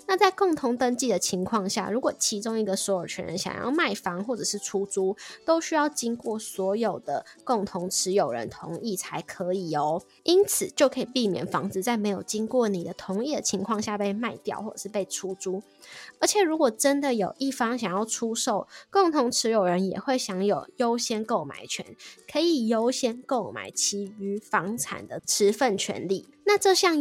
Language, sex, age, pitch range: Chinese, female, 10-29, 195-260 Hz